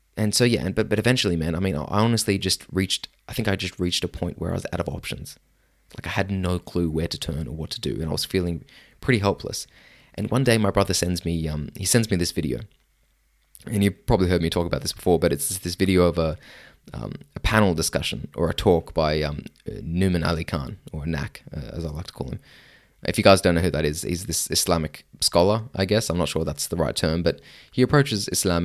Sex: male